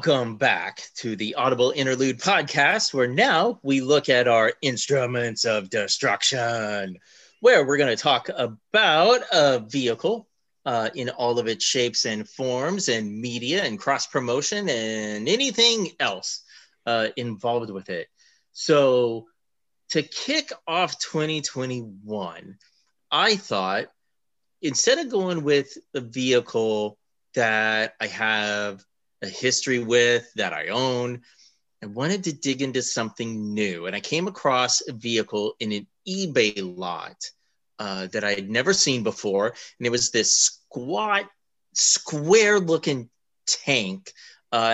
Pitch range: 115-150 Hz